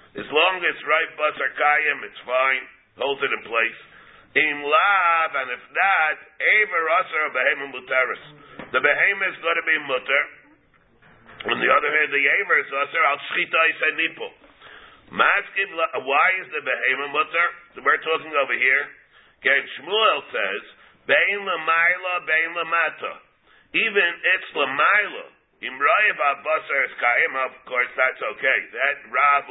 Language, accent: English, American